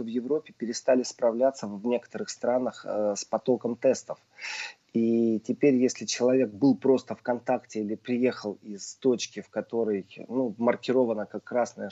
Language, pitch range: Russian, 110-130 Hz